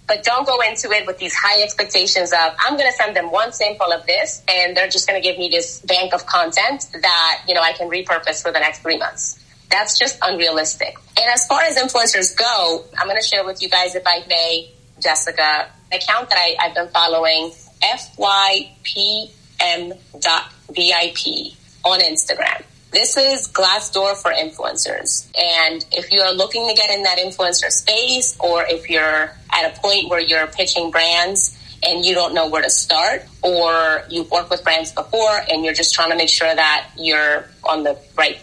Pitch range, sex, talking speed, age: 160-190 Hz, female, 190 wpm, 30-49